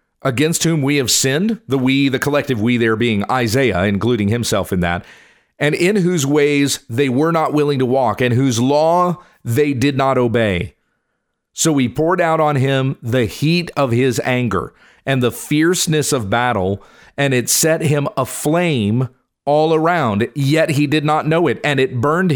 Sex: male